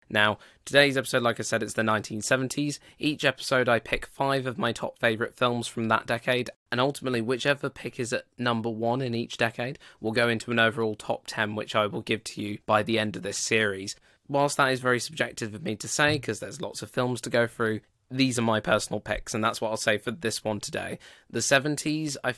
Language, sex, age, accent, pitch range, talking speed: English, male, 20-39, British, 110-130 Hz, 230 wpm